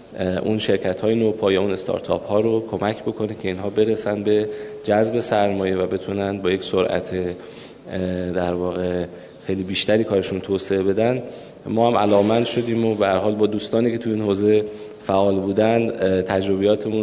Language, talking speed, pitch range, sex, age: Persian, 160 wpm, 95-110 Hz, male, 20-39